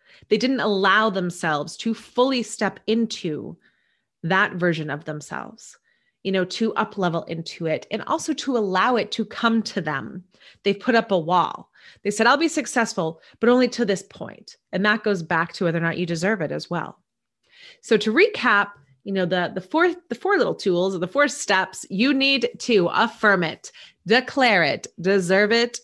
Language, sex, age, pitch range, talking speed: English, female, 30-49, 175-225 Hz, 185 wpm